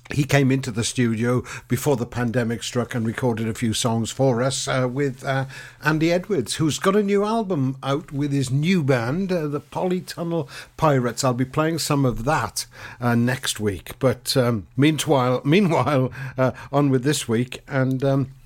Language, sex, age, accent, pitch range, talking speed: English, male, 60-79, British, 120-150 Hz, 180 wpm